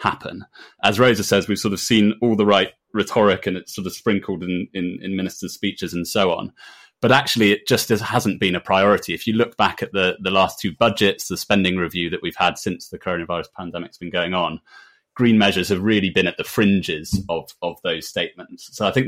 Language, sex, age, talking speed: English, male, 30-49, 230 wpm